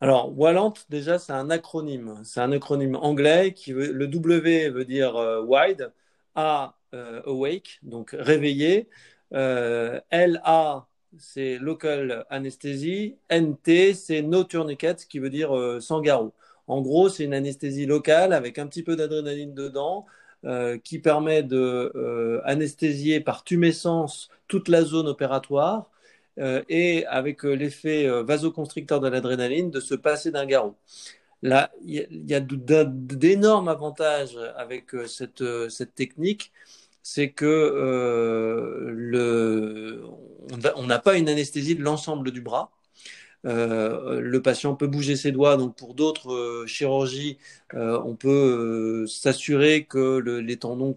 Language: French